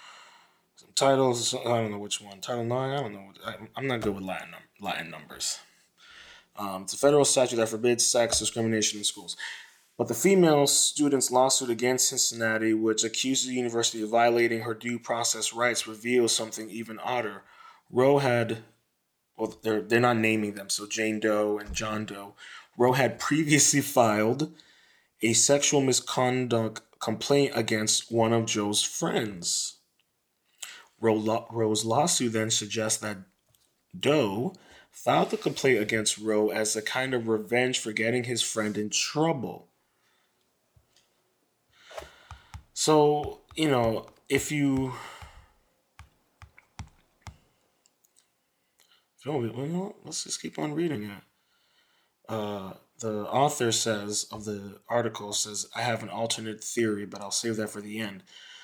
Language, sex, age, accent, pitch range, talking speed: English, male, 20-39, American, 110-125 Hz, 135 wpm